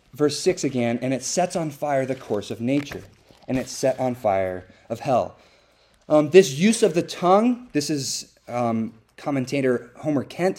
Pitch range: 120-160 Hz